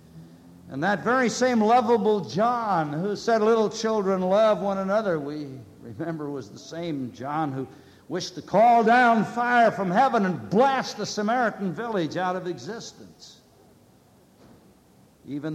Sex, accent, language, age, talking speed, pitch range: male, American, English, 60-79, 140 wpm, 150-215 Hz